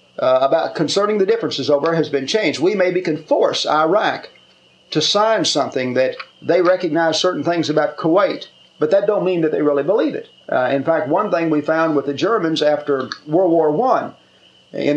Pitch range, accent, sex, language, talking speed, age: 145-190 Hz, American, male, English, 195 wpm, 50-69